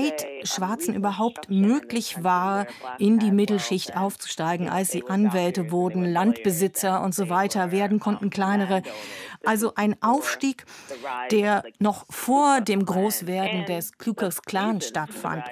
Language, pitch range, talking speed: German, 180-210 Hz, 130 wpm